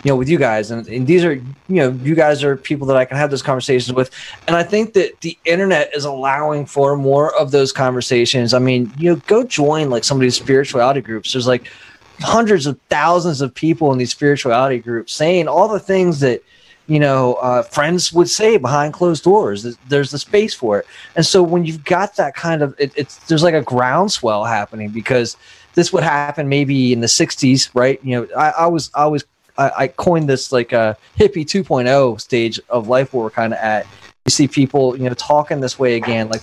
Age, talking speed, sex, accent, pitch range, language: 20-39, 220 wpm, male, American, 125-170 Hz, English